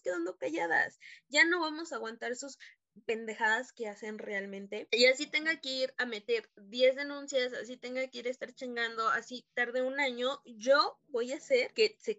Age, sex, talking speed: 20-39, female, 185 wpm